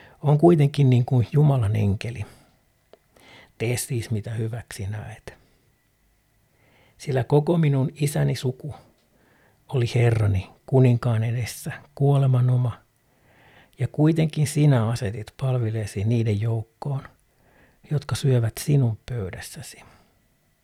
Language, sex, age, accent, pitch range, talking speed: Finnish, male, 60-79, native, 110-135 Hz, 95 wpm